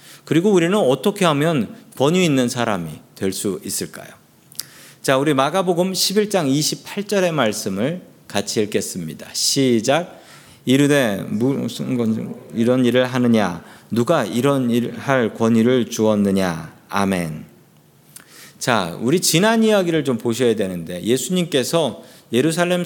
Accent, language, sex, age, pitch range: native, Korean, male, 40-59, 115-185 Hz